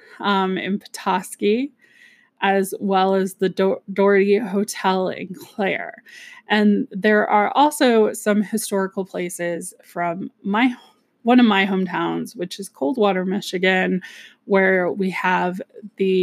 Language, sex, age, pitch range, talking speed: English, female, 20-39, 185-220 Hz, 120 wpm